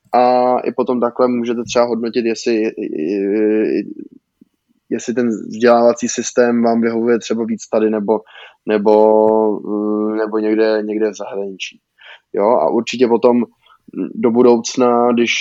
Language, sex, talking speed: Czech, male, 120 wpm